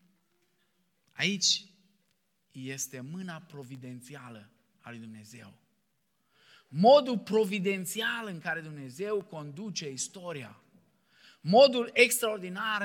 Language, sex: Romanian, male